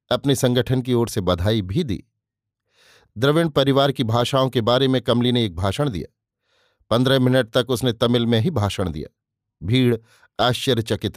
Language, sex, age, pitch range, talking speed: Hindi, male, 50-69, 110-135 Hz, 165 wpm